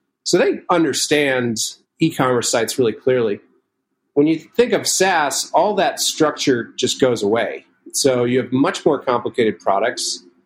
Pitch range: 115-140 Hz